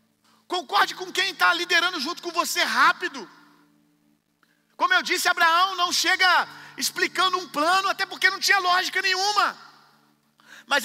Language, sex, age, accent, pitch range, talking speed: Gujarati, male, 40-59, Brazilian, 225-320 Hz, 140 wpm